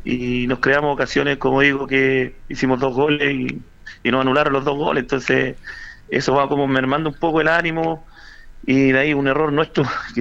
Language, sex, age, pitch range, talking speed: Spanish, male, 30-49, 130-150 Hz, 195 wpm